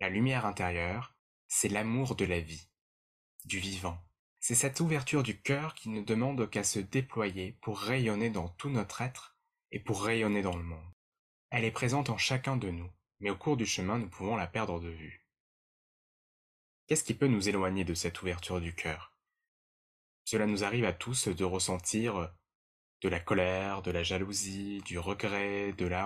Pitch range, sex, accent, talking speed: 90-120 Hz, male, French, 180 wpm